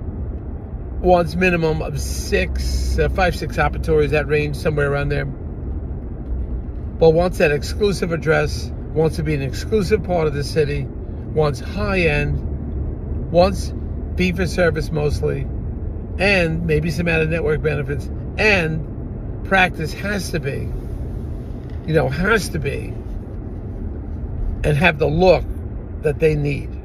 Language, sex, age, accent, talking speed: English, male, 50-69, American, 125 wpm